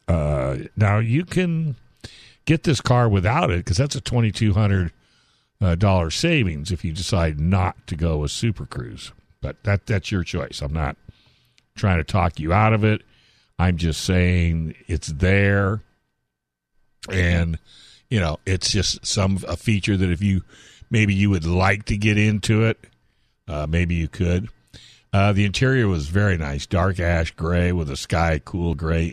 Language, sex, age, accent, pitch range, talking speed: English, male, 60-79, American, 80-105 Hz, 165 wpm